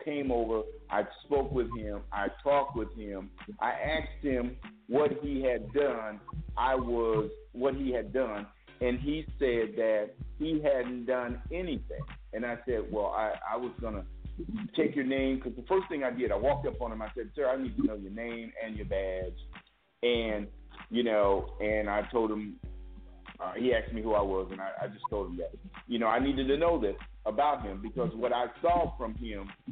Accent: American